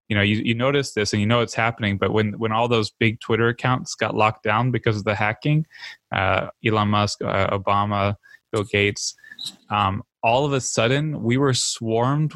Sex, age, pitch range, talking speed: male, 20-39, 105-125 Hz, 200 wpm